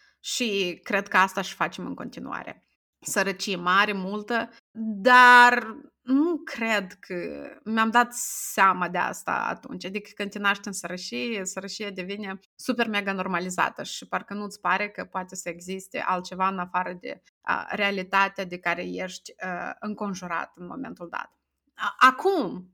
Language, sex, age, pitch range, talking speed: Romanian, female, 20-39, 190-260 Hz, 140 wpm